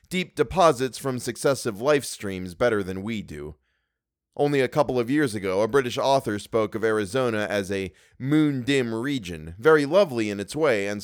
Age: 30-49